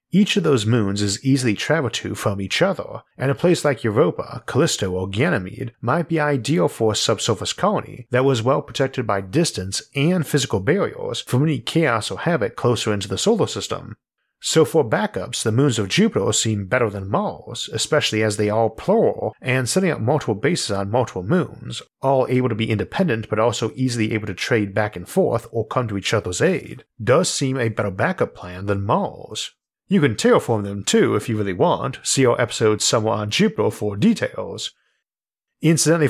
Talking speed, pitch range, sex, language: 190 wpm, 105-140 Hz, male, English